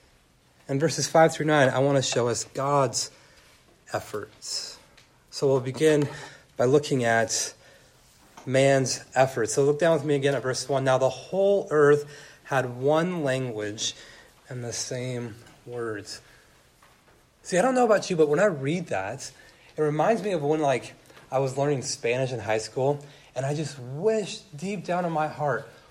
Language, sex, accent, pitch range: English, male, American, 135-180 Hz